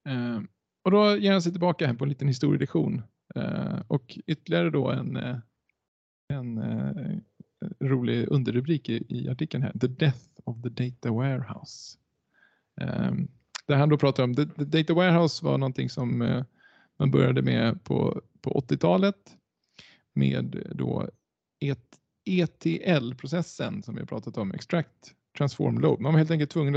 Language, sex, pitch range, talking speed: Swedish, male, 115-160 Hz, 150 wpm